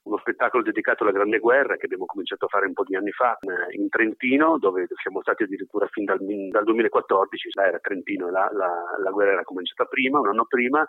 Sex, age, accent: male, 40-59, native